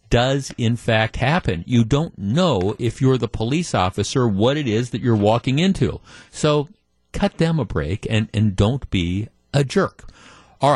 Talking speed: 175 wpm